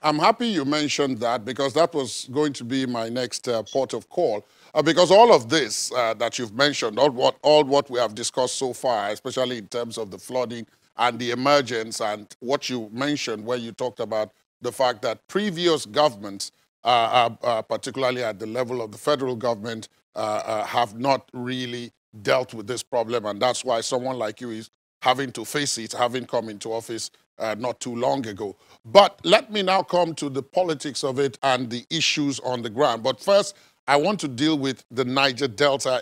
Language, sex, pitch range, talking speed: English, male, 120-155 Hz, 200 wpm